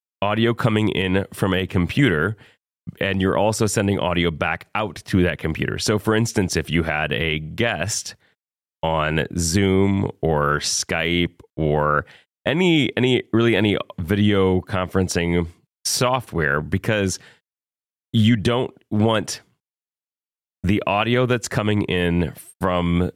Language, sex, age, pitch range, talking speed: English, male, 30-49, 85-110 Hz, 120 wpm